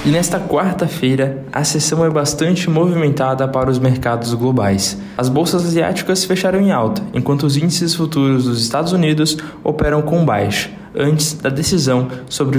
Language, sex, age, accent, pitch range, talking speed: Portuguese, male, 20-39, Brazilian, 125-155 Hz, 155 wpm